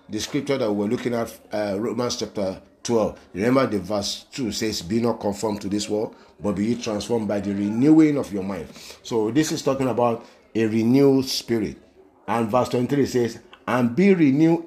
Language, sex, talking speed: English, male, 185 wpm